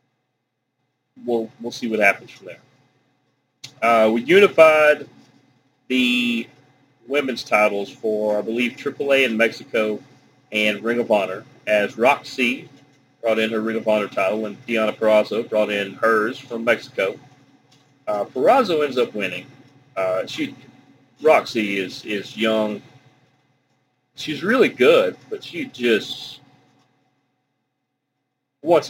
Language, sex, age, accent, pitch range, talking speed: English, male, 40-59, American, 115-135 Hz, 120 wpm